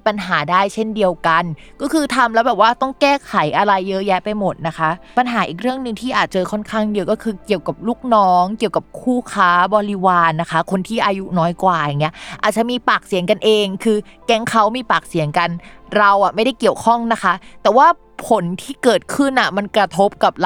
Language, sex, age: Thai, female, 20-39